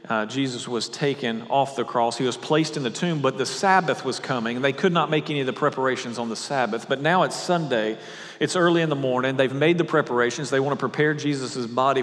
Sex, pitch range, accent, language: male, 125-160 Hz, American, English